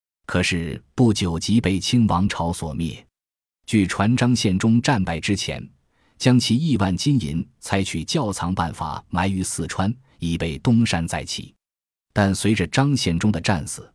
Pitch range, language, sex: 90-120 Hz, Chinese, male